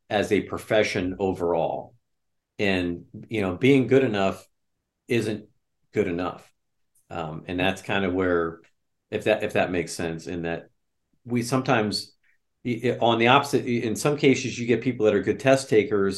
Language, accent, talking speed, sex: English, American, 160 wpm, male